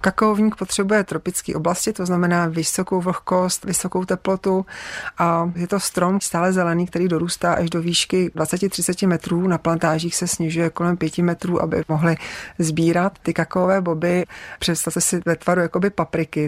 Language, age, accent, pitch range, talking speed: Czech, 40-59, native, 160-175 Hz, 155 wpm